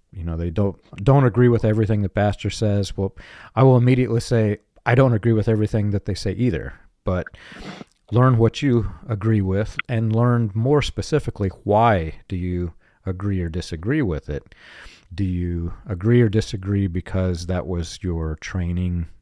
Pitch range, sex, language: 85-110 Hz, male, English